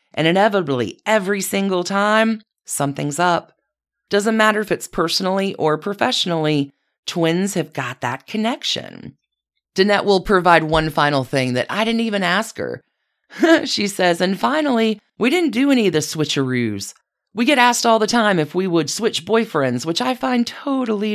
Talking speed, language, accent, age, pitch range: 160 wpm, English, American, 40-59, 160-220 Hz